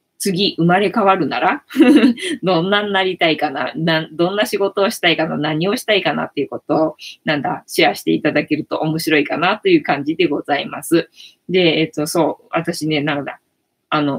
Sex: female